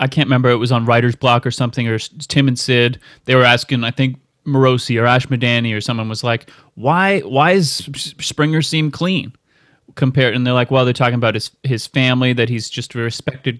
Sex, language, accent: male, English, American